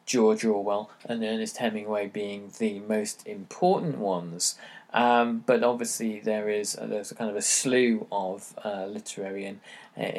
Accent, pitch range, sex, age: British, 105-140 Hz, male, 20-39